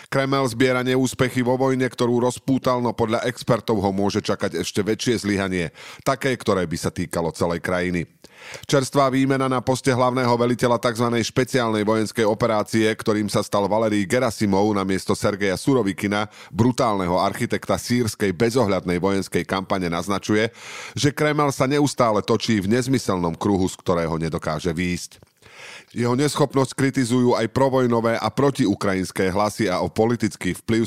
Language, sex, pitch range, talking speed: Slovak, male, 100-130 Hz, 140 wpm